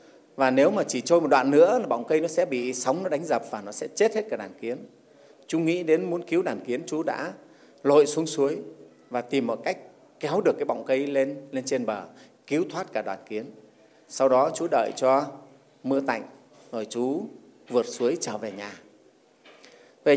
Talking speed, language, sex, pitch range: 210 wpm, Vietnamese, male, 130-175 Hz